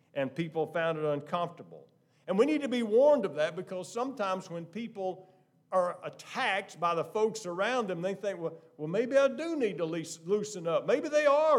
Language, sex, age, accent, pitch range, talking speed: English, male, 50-69, American, 140-190 Hz, 190 wpm